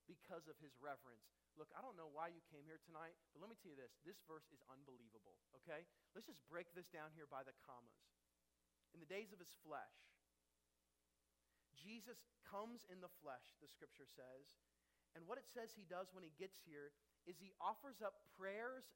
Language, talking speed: English, 195 wpm